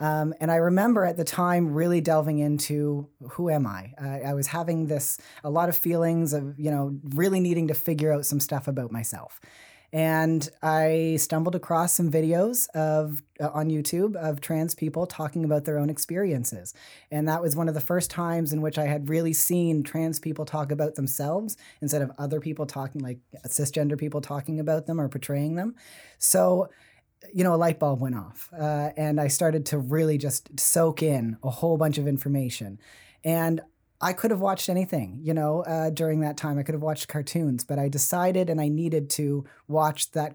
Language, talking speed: English, 200 wpm